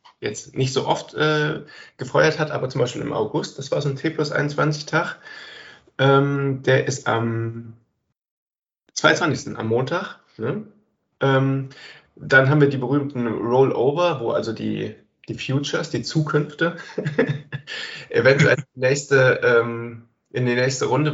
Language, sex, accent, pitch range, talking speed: German, male, German, 125-150 Hz, 120 wpm